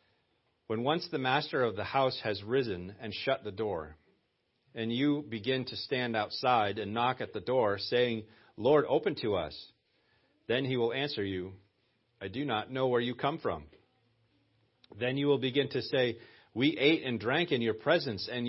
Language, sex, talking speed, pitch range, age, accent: English, male, 180 wpm, 100-125 Hz, 40-59, American